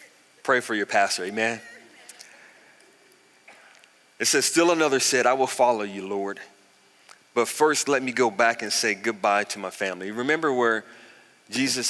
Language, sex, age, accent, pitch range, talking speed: English, male, 30-49, American, 105-140 Hz, 150 wpm